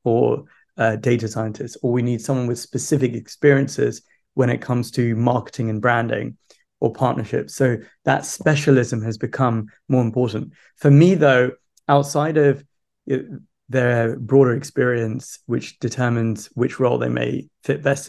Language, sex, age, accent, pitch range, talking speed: English, male, 20-39, British, 115-135 Hz, 145 wpm